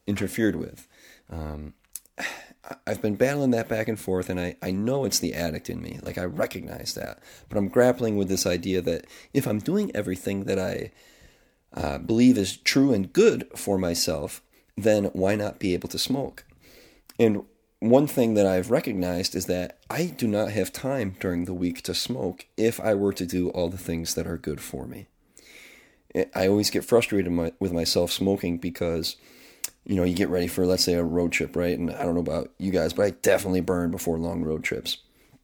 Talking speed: 200 wpm